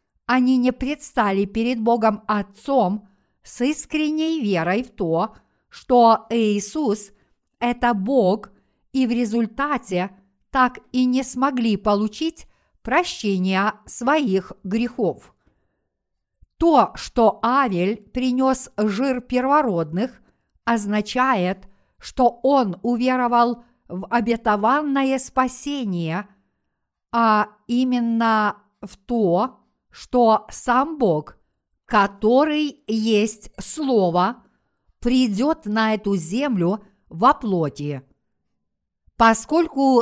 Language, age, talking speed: Russian, 50-69, 85 wpm